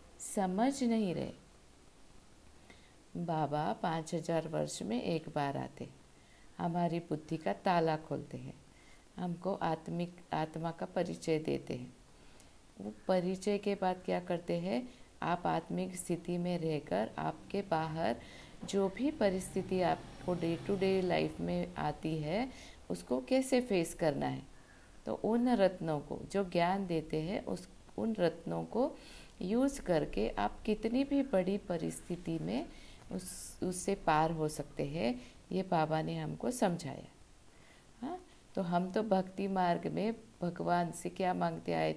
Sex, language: female, Hindi